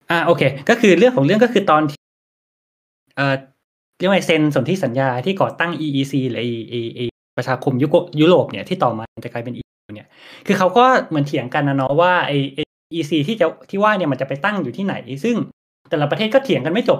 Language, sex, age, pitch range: Thai, male, 20-39, 135-175 Hz